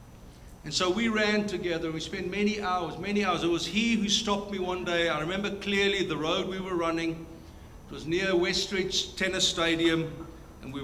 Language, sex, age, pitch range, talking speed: English, male, 60-79, 145-190 Hz, 195 wpm